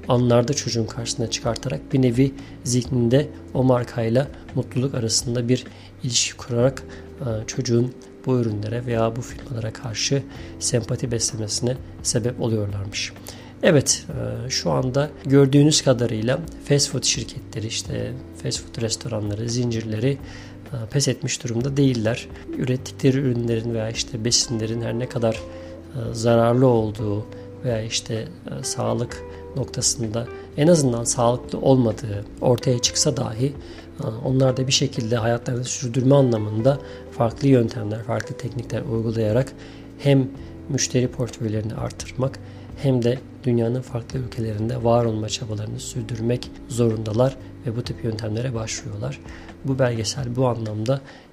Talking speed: 115 wpm